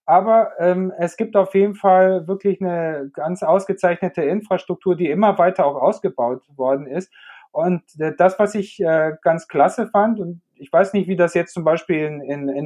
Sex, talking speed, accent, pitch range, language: male, 180 wpm, German, 150-190 Hz, German